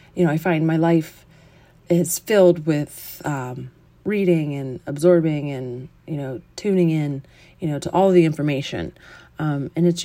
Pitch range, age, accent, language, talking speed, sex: 145-175 Hz, 30-49, American, English, 160 wpm, female